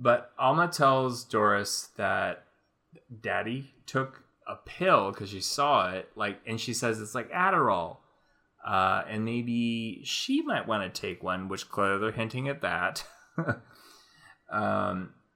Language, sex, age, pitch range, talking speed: English, male, 20-39, 95-130 Hz, 140 wpm